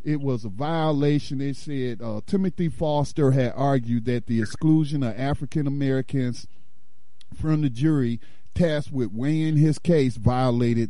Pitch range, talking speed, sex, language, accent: 115-145 Hz, 140 wpm, male, English, American